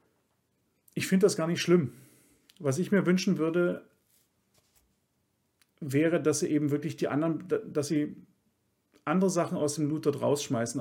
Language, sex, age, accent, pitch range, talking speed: German, male, 40-59, German, 135-175 Hz, 150 wpm